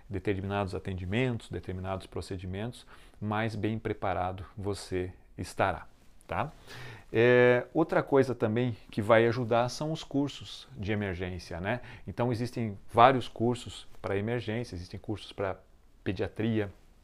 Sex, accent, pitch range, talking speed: male, Brazilian, 100-120 Hz, 115 wpm